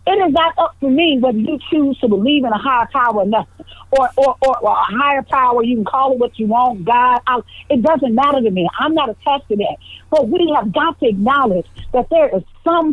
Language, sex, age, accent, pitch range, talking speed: English, female, 50-69, American, 225-290 Hz, 245 wpm